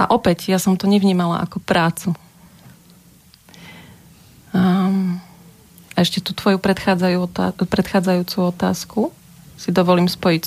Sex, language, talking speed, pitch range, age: female, Slovak, 110 wpm, 165-185 Hz, 30-49